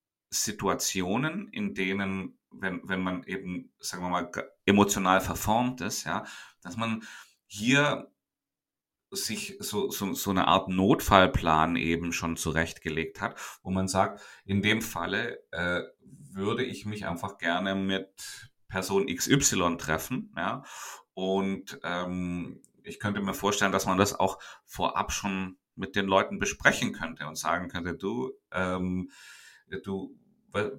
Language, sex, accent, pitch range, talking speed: German, male, German, 85-100 Hz, 135 wpm